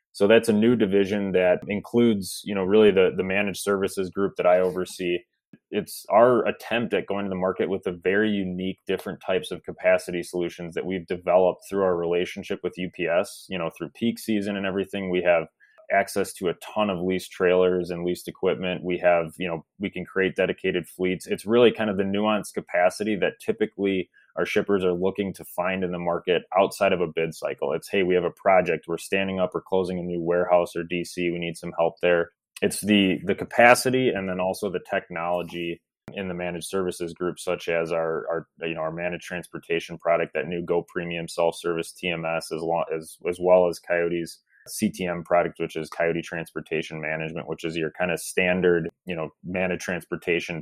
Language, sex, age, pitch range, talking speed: English, male, 20-39, 85-95 Hz, 205 wpm